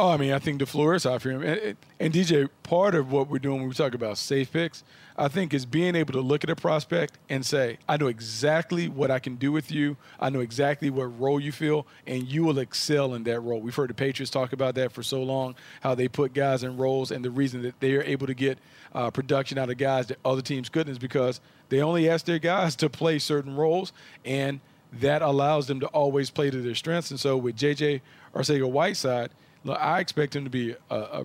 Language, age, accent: English, 40-59, American